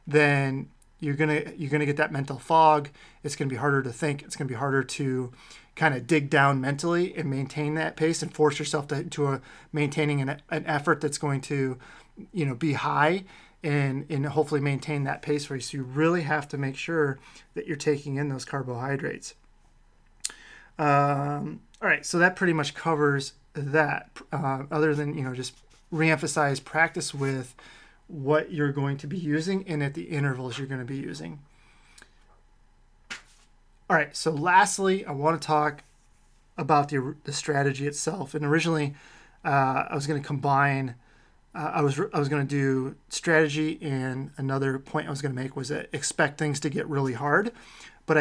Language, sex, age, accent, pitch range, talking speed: English, male, 30-49, American, 135-155 Hz, 185 wpm